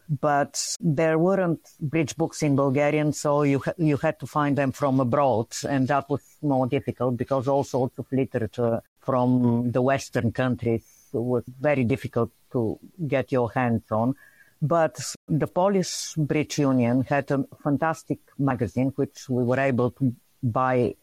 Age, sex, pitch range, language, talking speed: 50-69, female, 120-145 Hz, English, 155 wpm